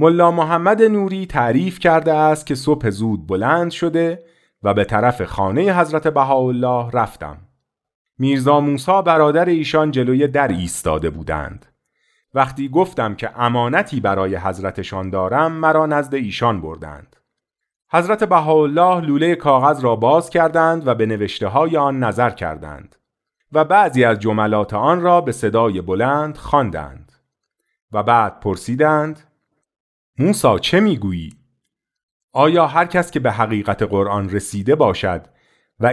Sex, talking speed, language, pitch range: male, 130 wpm, Persian, 100-155 Hz